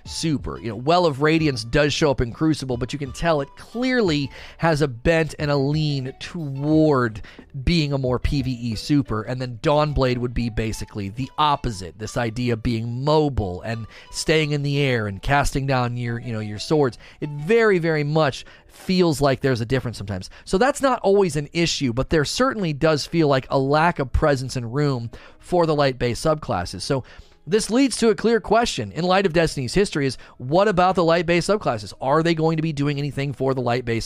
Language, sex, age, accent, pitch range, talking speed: English, male, 30-49, American, 125-170 Hz, 205 wpm